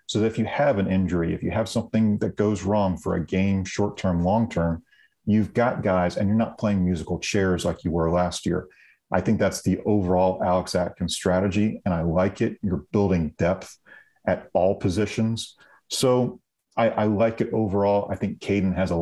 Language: English